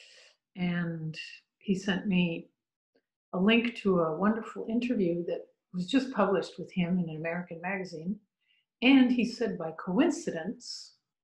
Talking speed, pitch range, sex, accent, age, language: 135 wpm, 170-225 Hz, female, American, 50-69, English